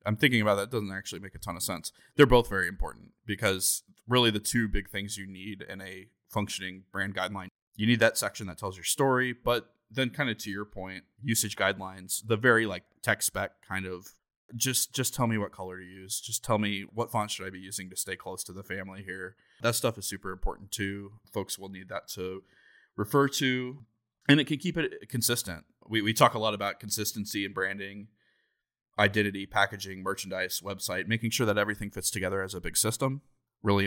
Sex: male